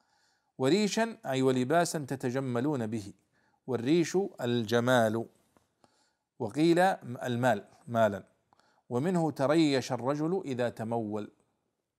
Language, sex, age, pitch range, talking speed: Arabic, male, 50-69, 120-160 Hz, 75 wpm